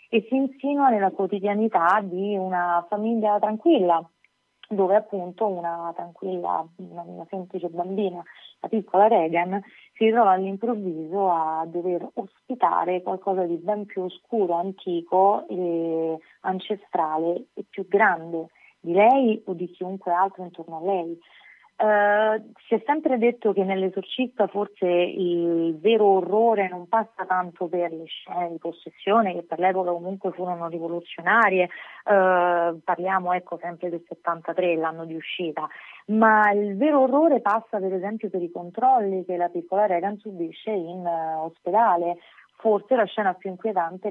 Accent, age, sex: native, 30-49, female